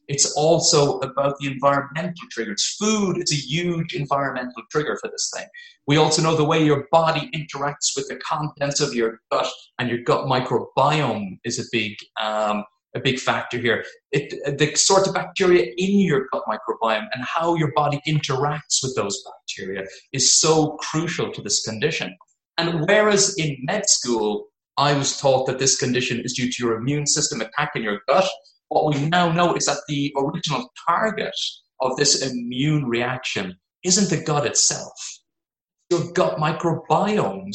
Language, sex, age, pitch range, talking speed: English, male, 30-49, 130-165 Hz, 165 wpm